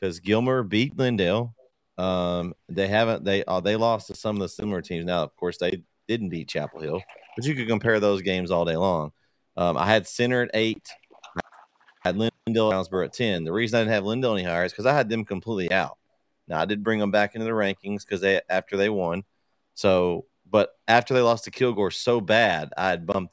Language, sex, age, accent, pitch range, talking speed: English, male, 30-49, American, 90-110 Hz, 225 wpm